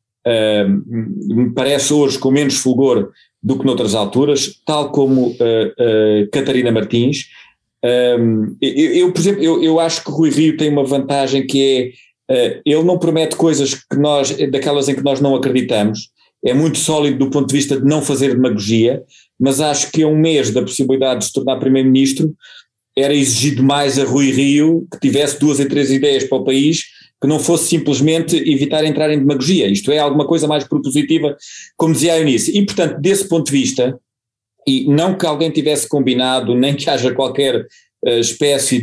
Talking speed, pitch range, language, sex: 175 wpm, 130-150 Hz, Portuguese, male